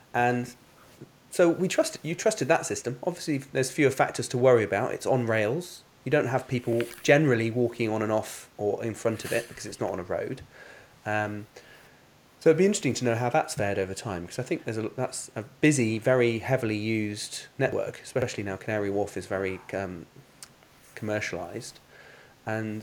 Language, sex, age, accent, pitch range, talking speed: English, male, 30-49, British, 105-130 Hz, 185 wpm